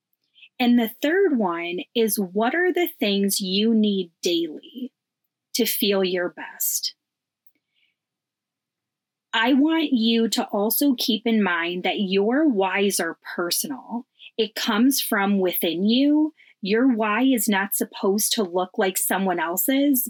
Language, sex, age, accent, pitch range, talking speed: English, female, 30-49, American, 195-245 Hz, 130 wpm